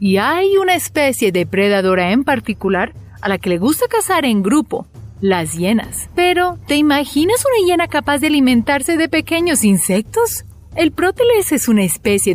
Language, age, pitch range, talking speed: Spanish, 30-49, 190-310 Hz, 160 wpm